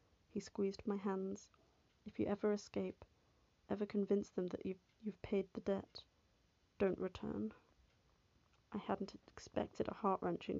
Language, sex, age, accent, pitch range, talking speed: English, female, 30-49, British, 185-205 Hz, 135 wpm